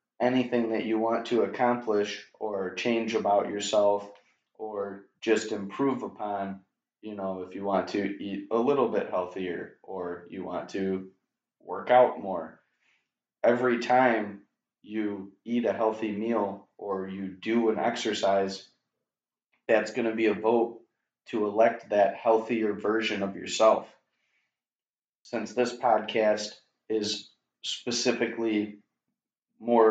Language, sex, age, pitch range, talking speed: English, male, 30-49, 100-115 Hz, 125 wpm